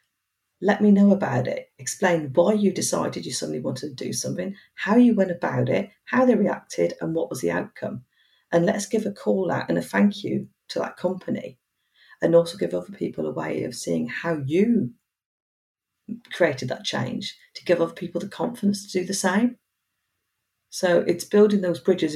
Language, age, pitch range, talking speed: English, 40-59, 170-205 Hz, 190 wpm